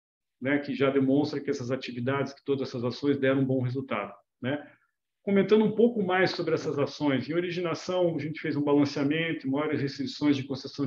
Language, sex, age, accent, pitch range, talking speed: Portuguese, male, 40-59, Brazilian, 135-155 Hz, 190 wpm